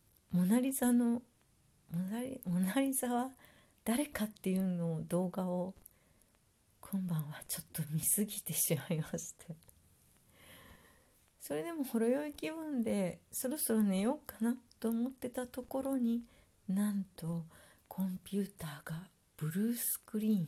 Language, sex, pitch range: Japanese, female, 165-225 Hz